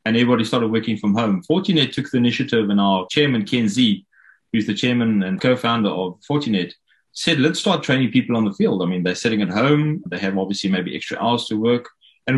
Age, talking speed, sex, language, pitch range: 30-49, 220 wpm, male, English, 105-130 Hz